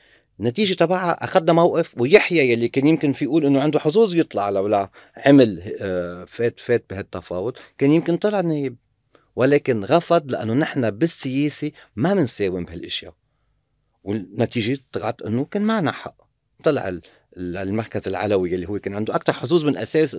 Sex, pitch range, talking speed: male, 115-165 Hz, 140 wpm